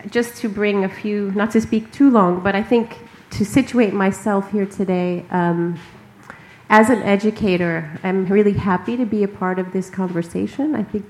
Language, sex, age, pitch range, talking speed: Swedish, female, 30-49, 185-210 Hz, 185 wpm